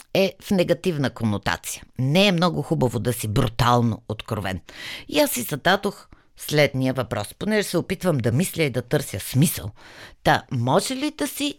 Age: 50-69